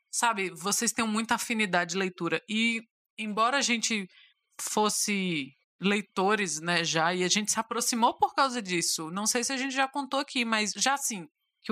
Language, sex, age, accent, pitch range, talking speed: Portuguese, female, 20-39, Brazilian, 195-260 Hz, 180 wpm